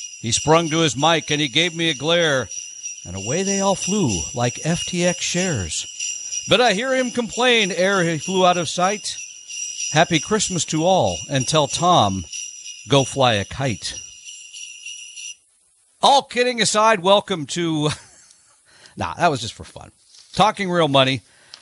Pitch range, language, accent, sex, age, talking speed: 125-175 Hz, English, American, male, 50-69, 150 wpm